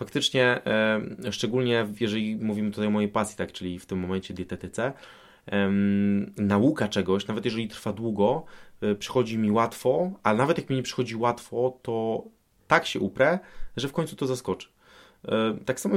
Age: 20-39